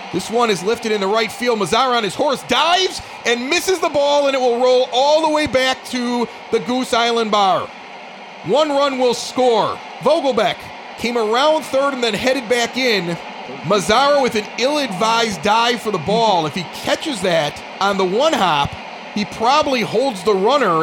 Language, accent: English, American